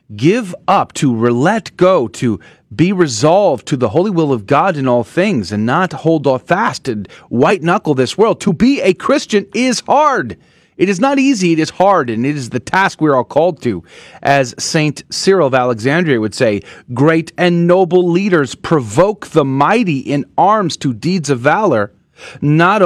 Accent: American